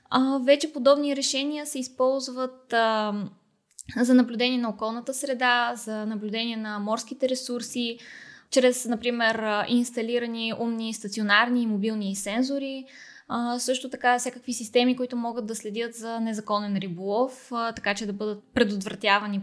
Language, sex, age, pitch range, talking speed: Bulgarian, female, 20-39, 220-260 Hz, 135 wpm